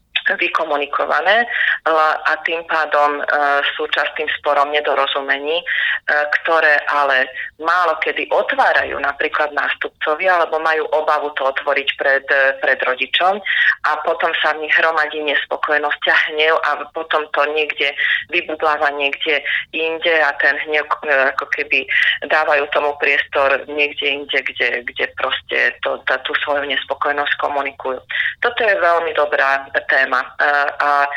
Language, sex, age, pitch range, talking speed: Slovak, female, 30-49, 145-165 Hz, 120 wpm